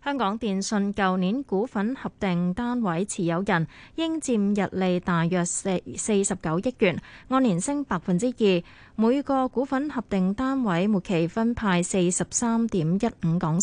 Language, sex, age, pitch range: Chinese, female, 20-39, 180-230 Hz